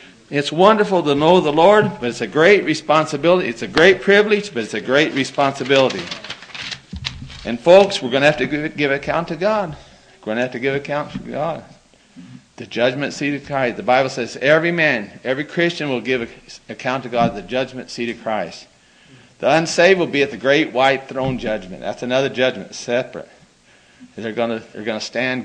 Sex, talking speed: male, 195 wpm